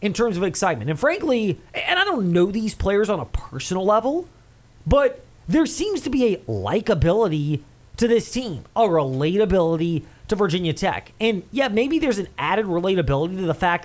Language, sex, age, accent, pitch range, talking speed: English, male, 30-49, American, 160-225 Hz, 180 wpm